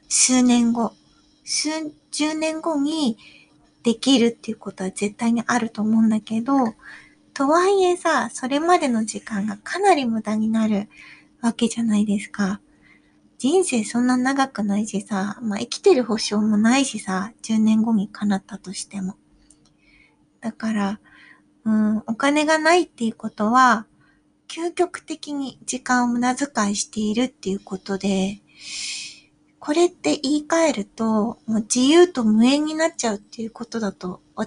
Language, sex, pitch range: Japanese, female, 215-280 Hz